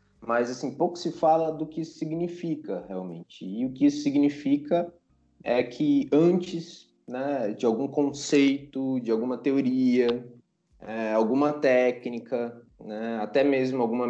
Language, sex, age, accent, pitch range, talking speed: Portuguese, male, 20-39, Brazilian, 110-155 Hz, 135 wpm